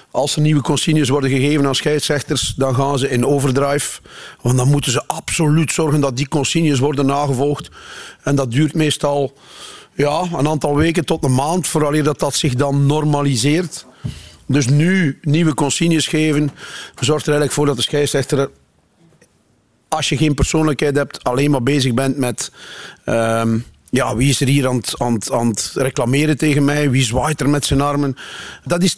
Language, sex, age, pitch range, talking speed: Dutch, male, 40-59, 130-150 Hz, 180 wpm